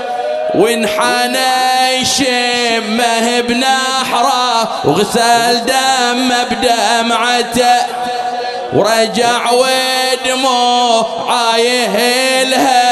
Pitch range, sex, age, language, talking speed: 240-260 Hz, male, 30-49, English, 45 wpm